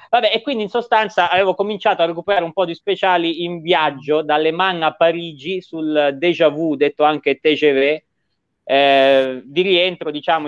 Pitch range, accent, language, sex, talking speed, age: 135-170 Hz, native, Italian, male, 165 wpm, 30-49